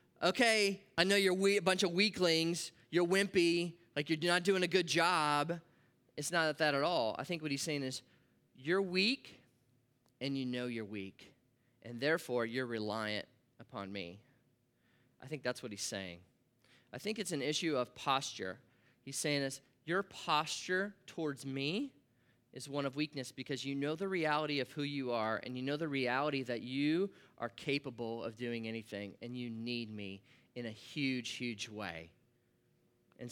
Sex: male